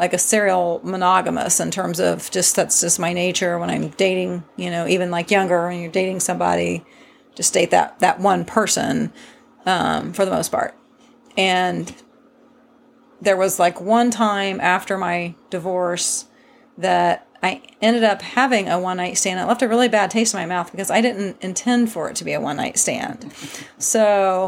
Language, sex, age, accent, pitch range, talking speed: English, female, 40-59, American, 180-220 Hz, 185 wpm